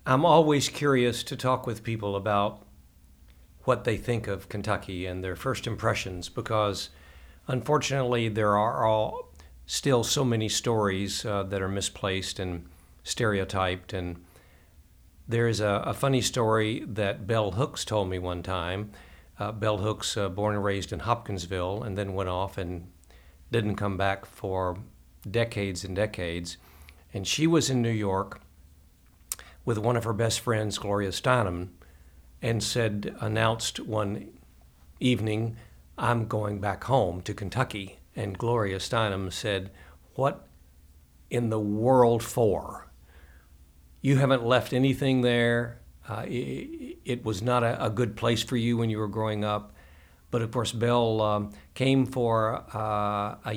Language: English